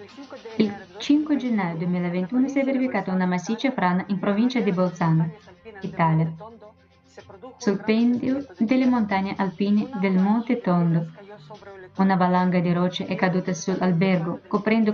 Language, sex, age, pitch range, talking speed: Italian, female, 20-39, 185-225 Hz, 125 wpm